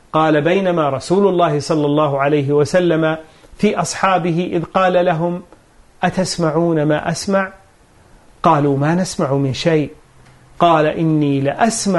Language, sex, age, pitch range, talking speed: Arabic, male, 40-59, 150-200 Hz, 120 wpm